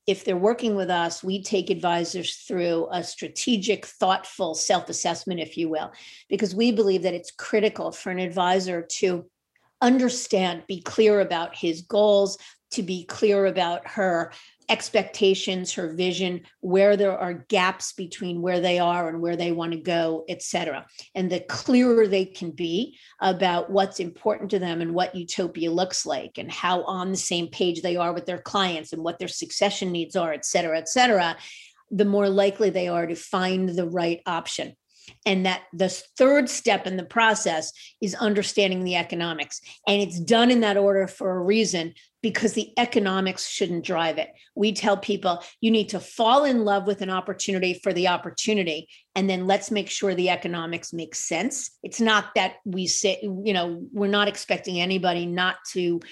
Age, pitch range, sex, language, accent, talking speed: 50-69, 175-205 Hz, female, English, American, 180 wpm